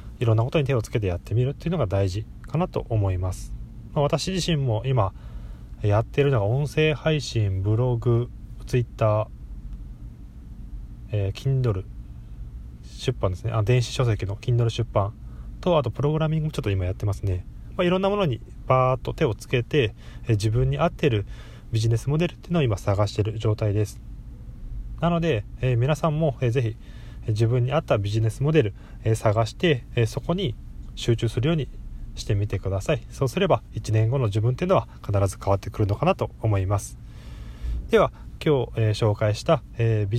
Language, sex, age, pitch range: Japanese, male, 20-39, 100-130 Hz